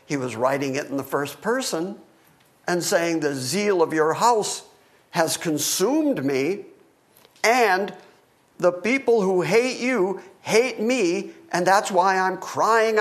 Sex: male